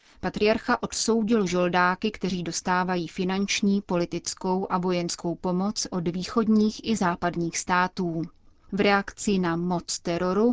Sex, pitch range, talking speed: female, 175-205 Hz, 115 wpm